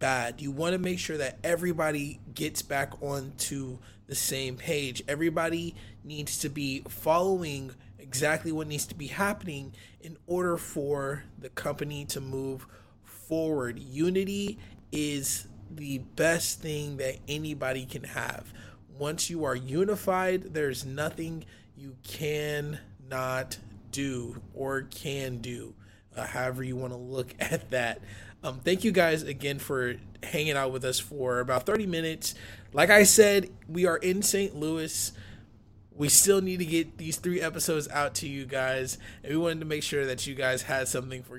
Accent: American